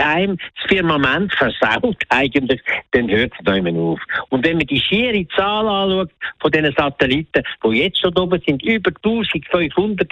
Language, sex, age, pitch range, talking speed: German, male, 60-79, 135-195 Hz, 160 wpm